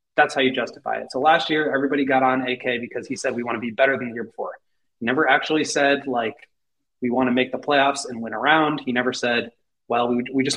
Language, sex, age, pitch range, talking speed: English, male, 20-39, 120-145 Hz, 260 wpm